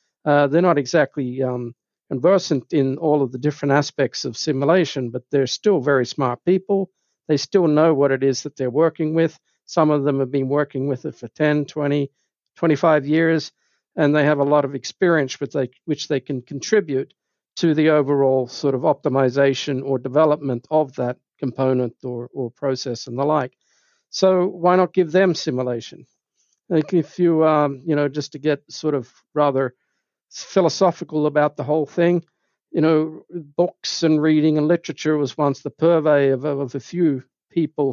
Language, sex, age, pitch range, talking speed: English, male, 60-79, 135-155 Hz, 175 wpm